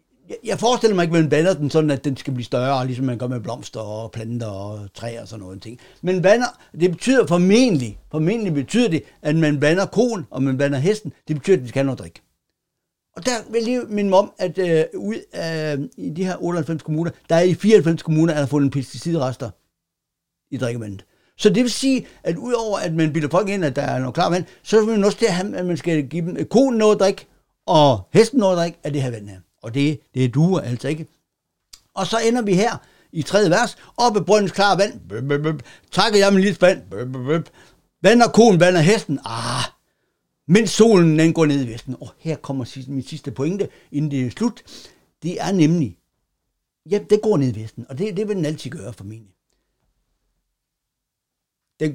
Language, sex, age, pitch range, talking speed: Danish, male, 60-79, 130-200 Hz, 225 wpm